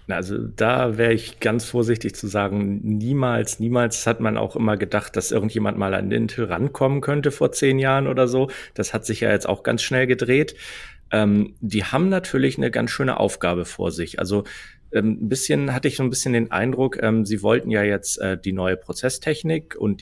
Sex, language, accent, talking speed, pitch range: male, German, German, 200 wpm, 100-120 Hz